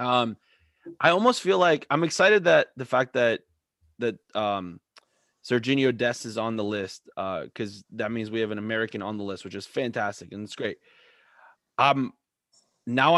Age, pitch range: 20-39, 110-130 Hz